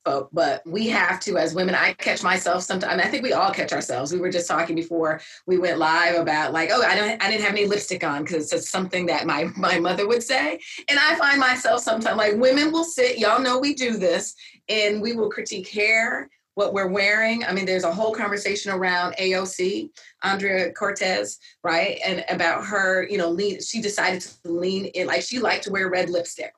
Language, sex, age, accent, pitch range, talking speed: English, female, 30-49, American, 165-205 Hz, 220 wpm